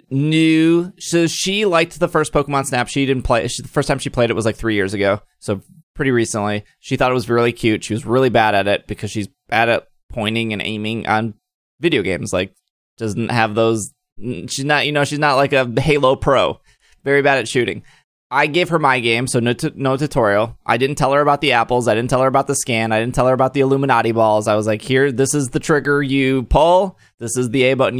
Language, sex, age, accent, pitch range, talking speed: English, male, 20-39, American, 110-145 Hz, 240 wpm